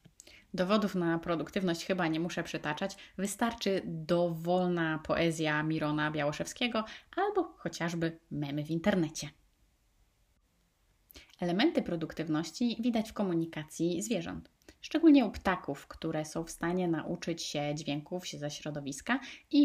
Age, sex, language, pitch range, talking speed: 20-39, female, Polish, 155-200 Hz, 115 wpm